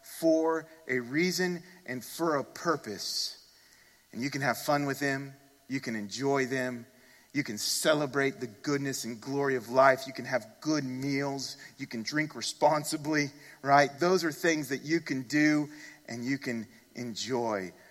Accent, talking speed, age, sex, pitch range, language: American, 160 wpm, 40-59, male, 110-145 Hz, English